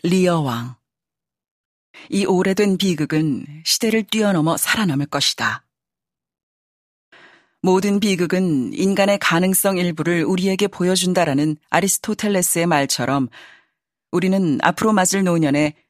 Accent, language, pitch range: native, Korean, 155-195 Hz